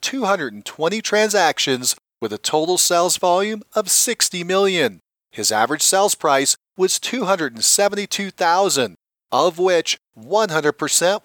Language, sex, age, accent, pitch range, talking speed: English, male, 40-59, American, 155-205 Hz, 100 wpm